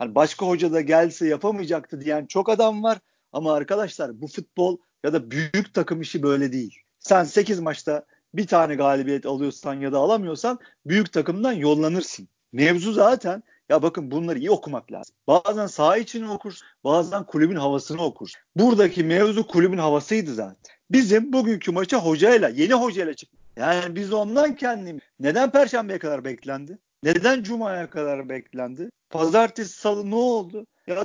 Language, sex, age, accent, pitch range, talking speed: Turkish, male, 50-69, native, 165-230 Hz, 155 wpm